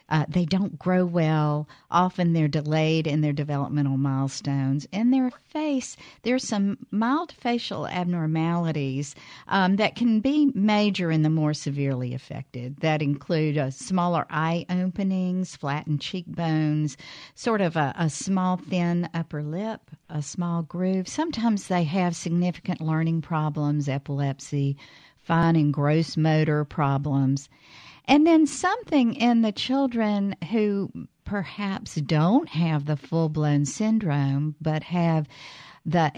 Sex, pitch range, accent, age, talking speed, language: female, 145-195 Hz, American, 50-69, 130 wpm, English